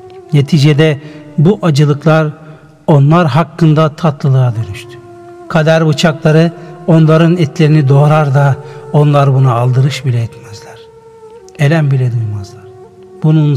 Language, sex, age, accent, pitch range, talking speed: Turkish, male, 60-79, native, 130-170 Hz, 95 wpm